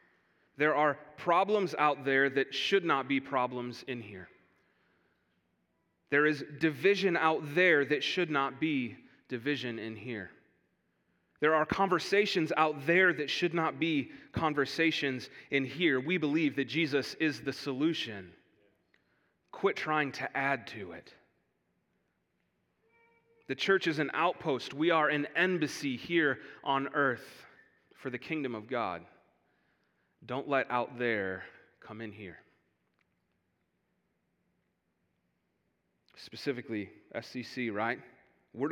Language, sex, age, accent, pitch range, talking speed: English, male, 30-49, American, 115-155 Hz, 120 wpm